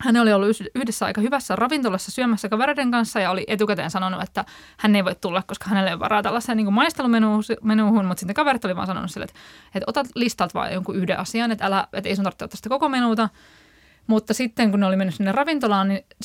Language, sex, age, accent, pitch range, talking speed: Finnish, female, 20-39, native, 200-250 Hz, 225 wpm